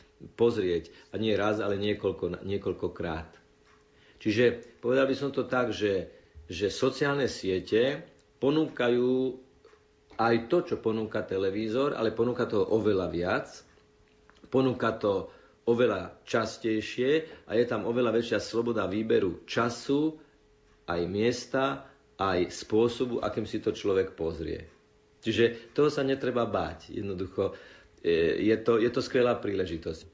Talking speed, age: 120 wpm, 50-69